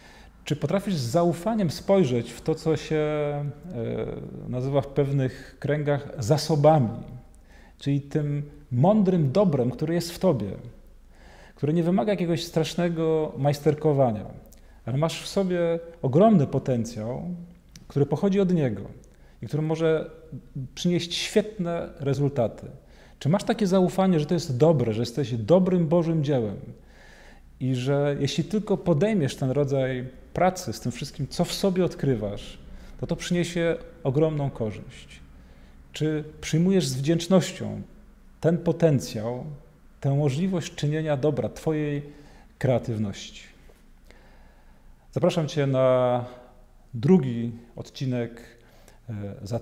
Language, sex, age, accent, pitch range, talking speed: Polish, male, 40-59, native, 120-165 Hz, 115 wpm